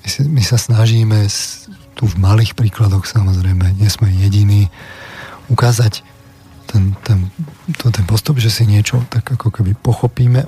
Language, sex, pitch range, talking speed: Slovak, male, 105-125 Hz, 135 wpm